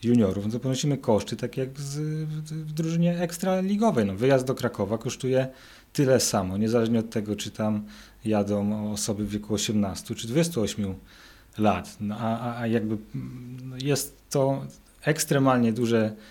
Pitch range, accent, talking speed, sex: 105-120 Hz, native, 145 wpm, male